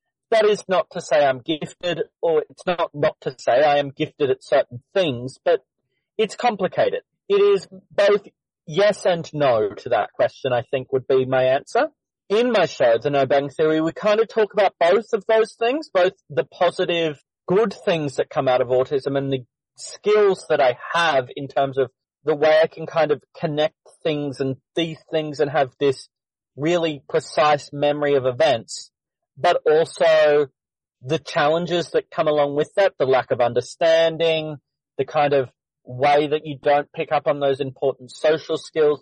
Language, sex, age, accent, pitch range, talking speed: English, male, 40-59, Australian, 140-200 Hz, 180 wpm